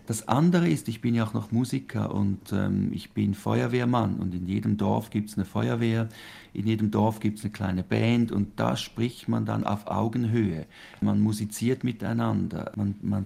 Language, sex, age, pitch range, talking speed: German, male, 50-69, 100-115 Hz, 190 wpm